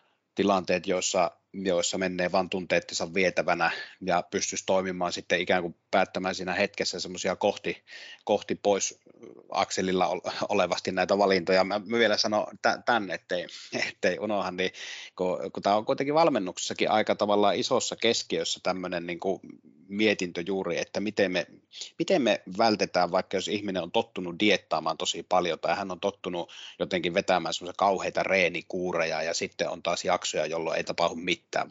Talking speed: 145 wpm